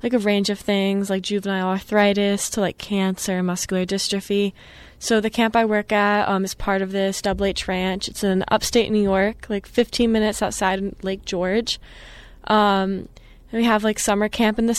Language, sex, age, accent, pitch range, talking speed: English, female, 20-39, American, 190-210 Hz, 185 wpm